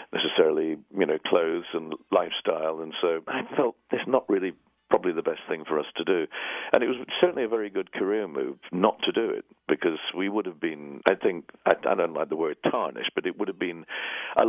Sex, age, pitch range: male, 50-69, 350-430 Hz